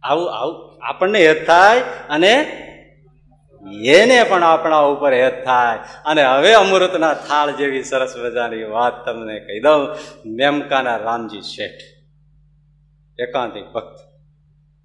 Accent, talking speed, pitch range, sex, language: native, 110 wpm, 130-160 Hz, male, Gujarati